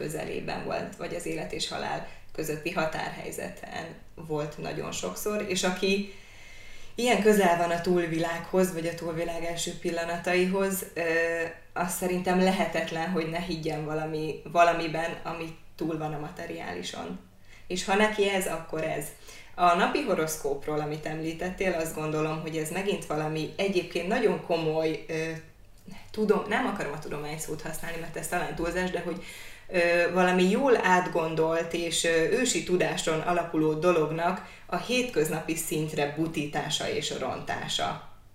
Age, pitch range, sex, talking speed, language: 20-39, 155-185 Hz, female, 130 wpm, Hungarian